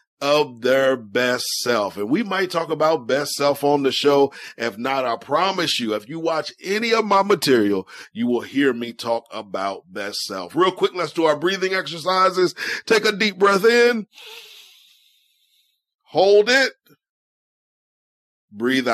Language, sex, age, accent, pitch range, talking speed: English, male, 40-59, American, 160-215 Hz, 155 wpm